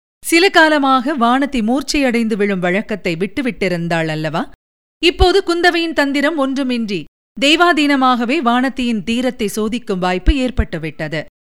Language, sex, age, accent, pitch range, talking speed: Tamil, female, 50-69, native, 200-290 Hz, 95 wpm